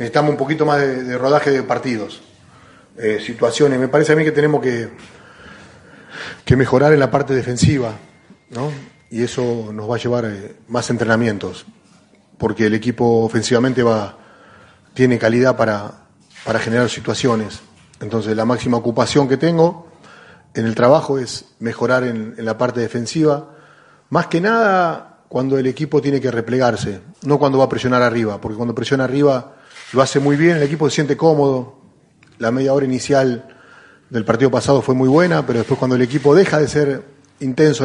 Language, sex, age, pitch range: Spanish, male, 30-49, 115-140 Hz